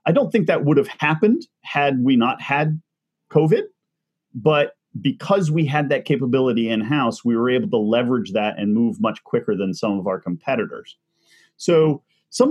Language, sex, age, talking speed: English, male, 30-49, 175 wpm